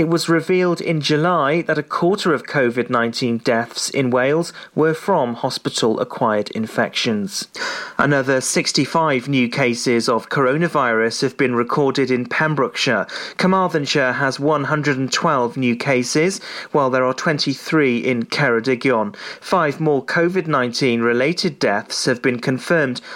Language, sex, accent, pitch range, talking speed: English, male, British, 125-165 Hz, 120 wpm